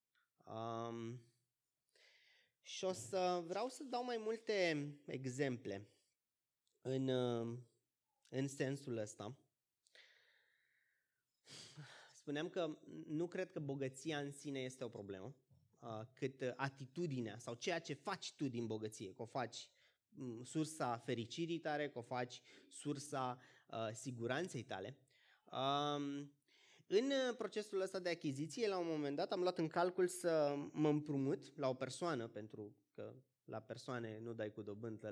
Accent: native